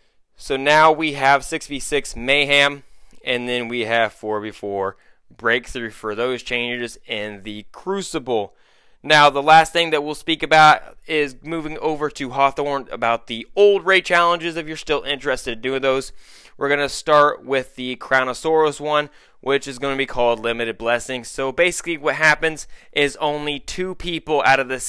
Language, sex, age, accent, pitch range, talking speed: English, male, 20-39, American, 120-150 Hz, 170 wpm